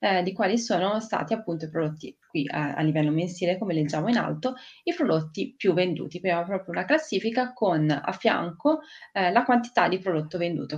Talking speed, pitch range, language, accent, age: 190 wpm, 155-200 Hz, Italian, native, 30-49